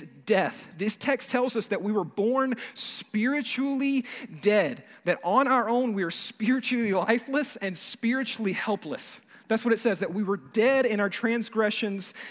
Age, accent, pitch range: 30-49, American, 205-250 Hz